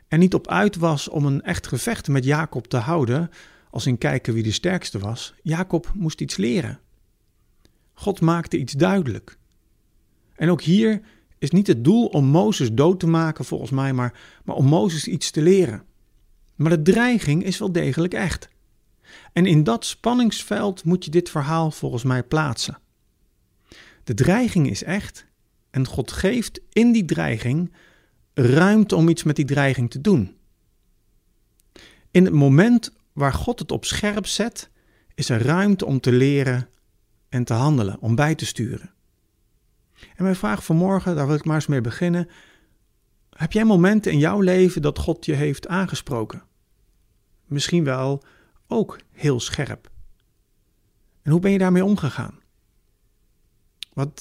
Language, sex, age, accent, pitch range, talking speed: Dutch, male, 50-69, Dutch, 110-175 Hz, 155 wpm